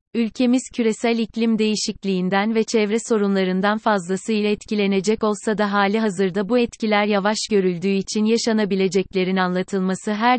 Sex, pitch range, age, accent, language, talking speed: female, 195-220 Hz, 30-49, native, Turkish, 120 wpm